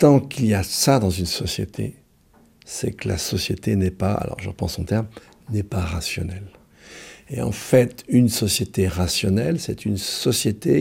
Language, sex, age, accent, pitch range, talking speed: French, male, 60-79, French, 95-120 Hz, 170 wpm